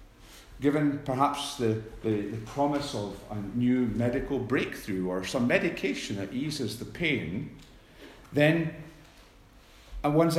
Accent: British